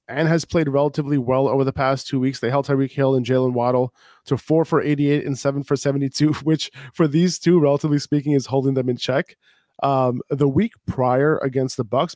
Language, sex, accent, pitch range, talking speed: English, male, American, 130-155 Hz, 210 wpm